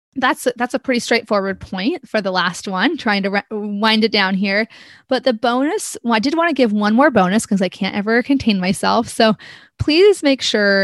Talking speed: 200 wpm